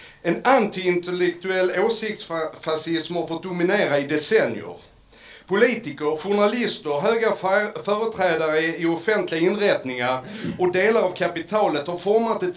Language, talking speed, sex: Swedish, 110 wpm, male